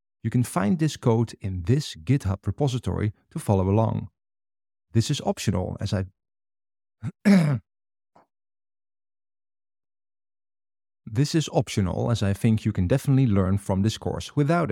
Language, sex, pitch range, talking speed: English, male, 100-130 Hz, 125 wpm